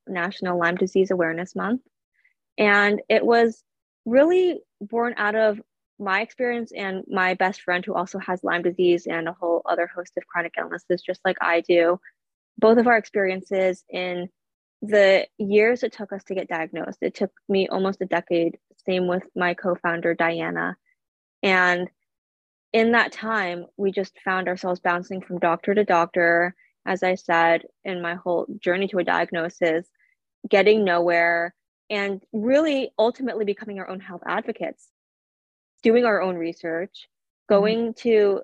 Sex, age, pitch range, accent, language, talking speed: female, 20-39, 180-210 Hz, American, English, 155 wpm